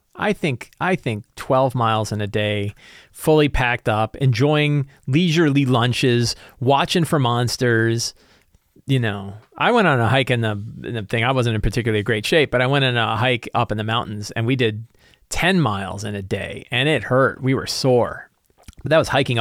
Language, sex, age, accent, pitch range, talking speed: English, male, 40-59, American, 110-145 Hz, 200 wpm